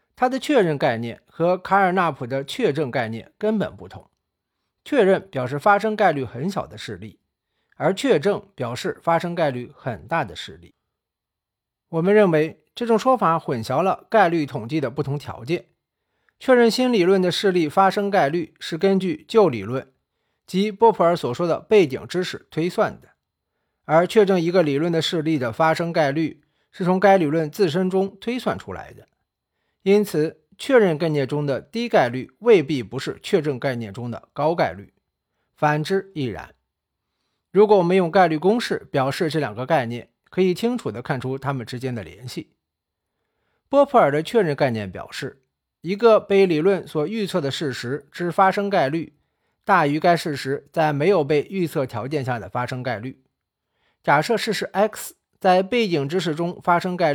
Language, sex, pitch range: Chinese, male, 135-195 Hz